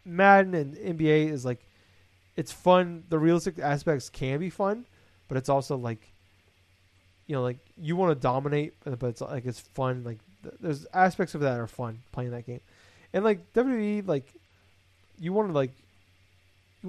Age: 20-39